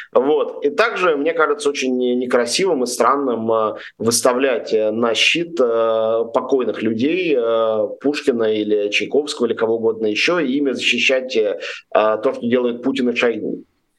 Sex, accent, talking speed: male, native, 130 wpm